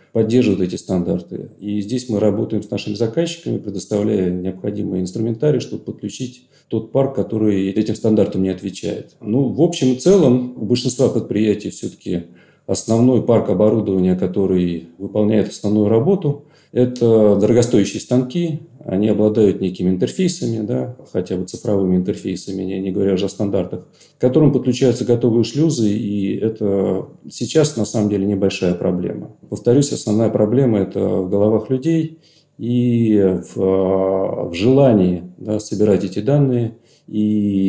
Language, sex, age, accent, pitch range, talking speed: Russian, male, 40-59, native, 95-120 Hz, 130 wpm